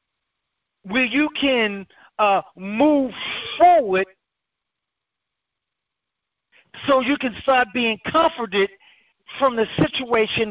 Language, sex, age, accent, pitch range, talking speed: English, male, 50-69, American, 200-270 Hz, 85 wpm